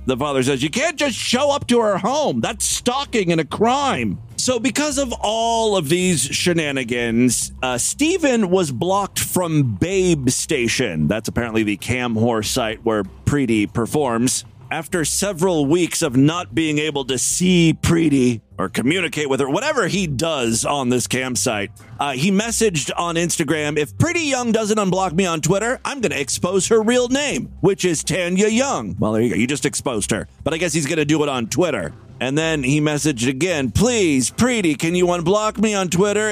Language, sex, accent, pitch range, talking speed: English, male, American, 130-200 Hz, 190 wpm